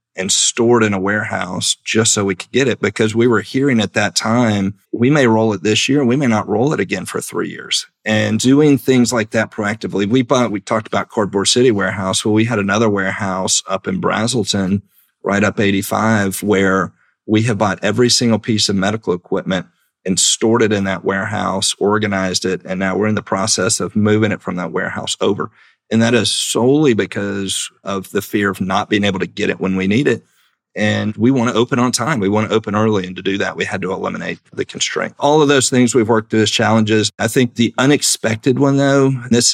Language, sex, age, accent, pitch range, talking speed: English, male, 40-59, American, 100-115 Hz, 220 wpm